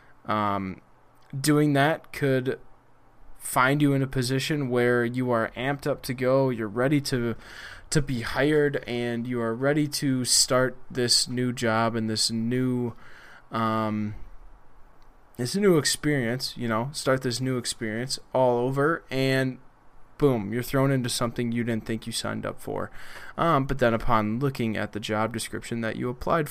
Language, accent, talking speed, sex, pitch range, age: English, American, 160 wpm, male, 115-135 Hz, 20-39